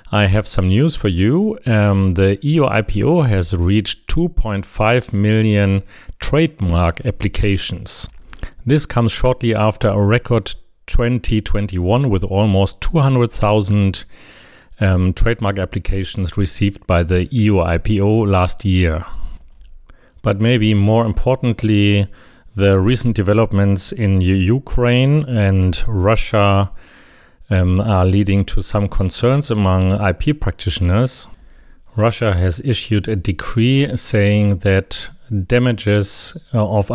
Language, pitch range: English, 95-110 Hz